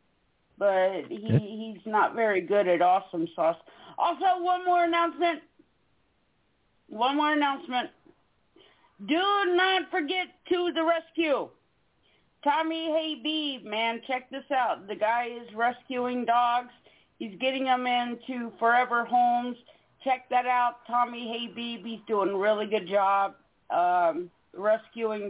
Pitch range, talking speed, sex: 215-275 Hz, 130 wpm, female